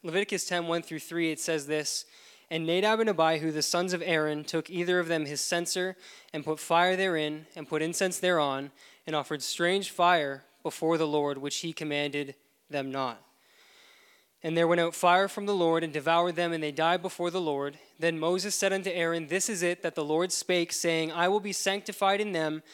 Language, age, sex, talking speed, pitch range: English, 20-39, male, 205 wpm, 150-180 Hz